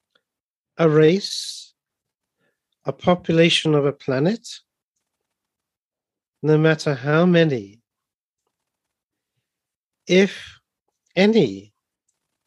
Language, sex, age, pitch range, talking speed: English, male, 50-69, 145-190 Hz, 65 wpm